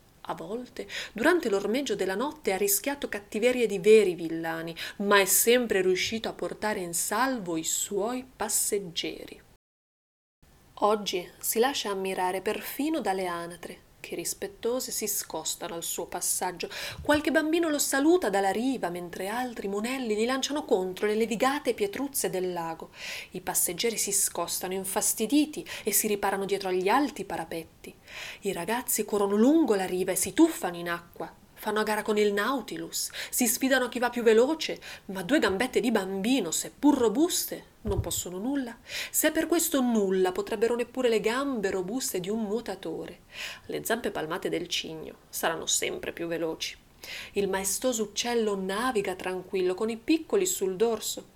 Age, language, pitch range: 30-49, Italian, 190-255 Hz